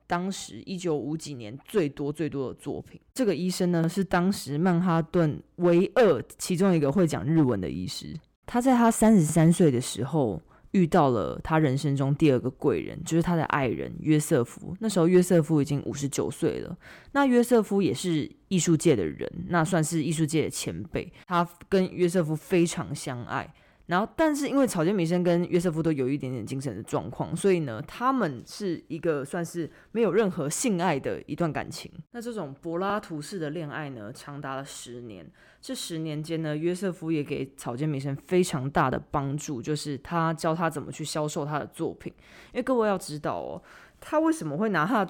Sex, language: female, Chinese